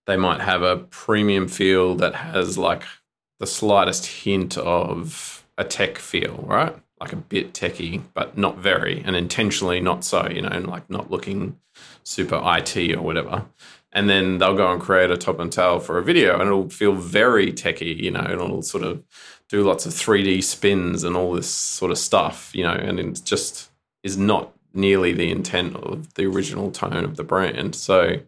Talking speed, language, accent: 195 wpm, English, Australian